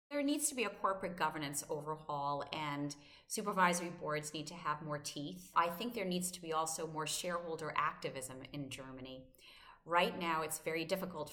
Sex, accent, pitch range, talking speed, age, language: female, American, 145-175 Hz, 175 wpm, 30-49, German